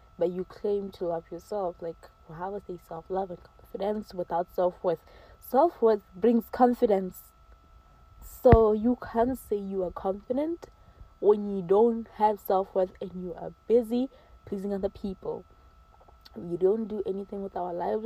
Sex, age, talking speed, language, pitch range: female, 20-39, 155 wpm, English, 180-235 Hz